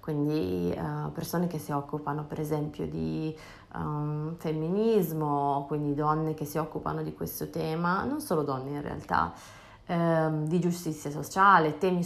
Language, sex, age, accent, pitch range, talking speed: Italian, female, 20-39, native, 155-180 Hz, 130 wpm